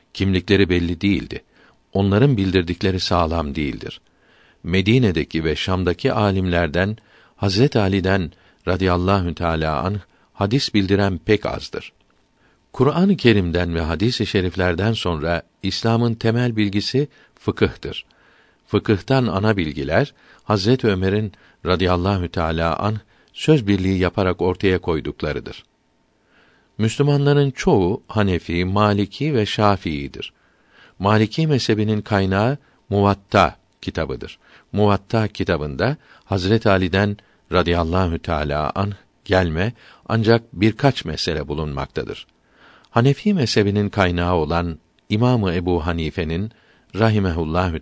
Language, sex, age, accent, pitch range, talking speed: Turkish, male, 50-69, native, 90-110 Hz, 95 wpm